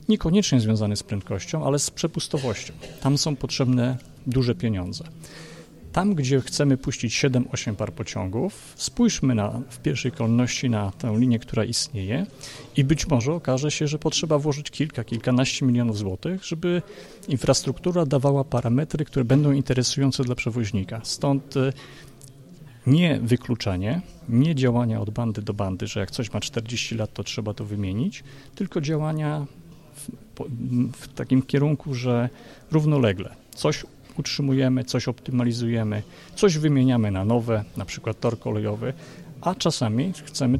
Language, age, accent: Polish, 40-59, native